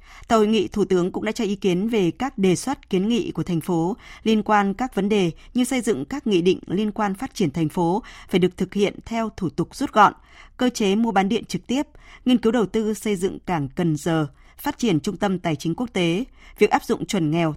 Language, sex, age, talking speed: Vietnamese, female, 20-39, 250 wpm